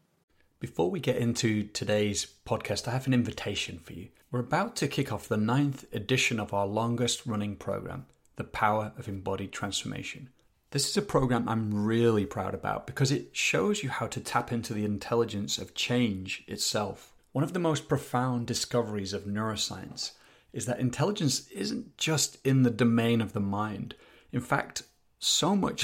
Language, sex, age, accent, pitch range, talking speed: English, male, 30-49, British, 105-130 Hz, 170 wpm